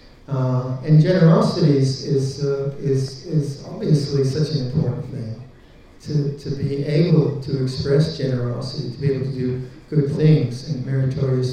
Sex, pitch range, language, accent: male, 130-145 Hz, English, American